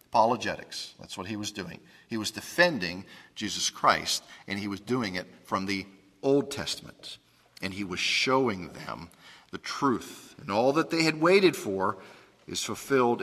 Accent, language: American, English